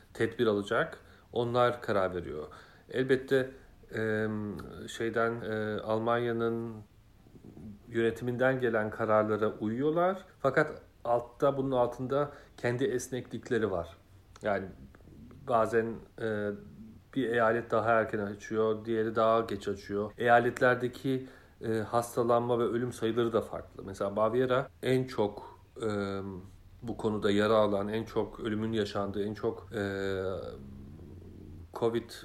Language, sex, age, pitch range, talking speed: Turkish, male, 40-59, 105-125 Hz, 100 wpm